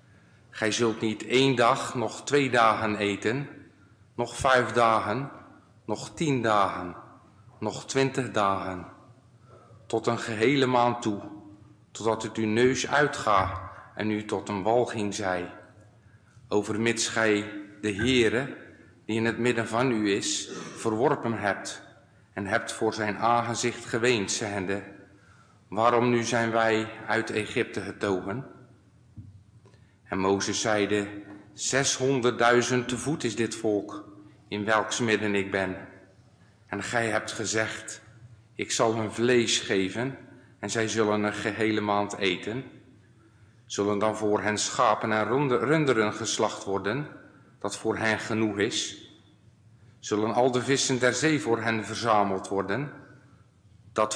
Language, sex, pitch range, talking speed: Dutch, male, 105-120 Hz, 130 wpm